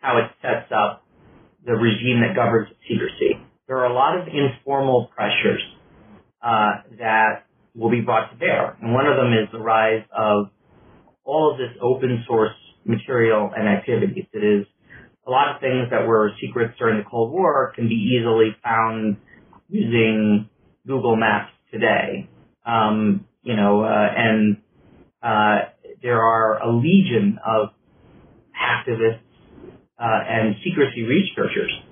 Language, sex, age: English, male, 30-49